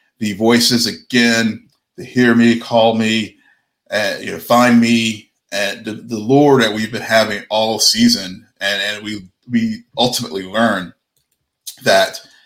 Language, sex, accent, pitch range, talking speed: English, male, American, 105-135 Hz, 155 wpm